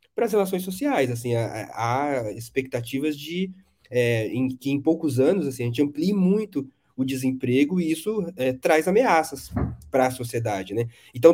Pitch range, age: 130-180 Hz, 20-39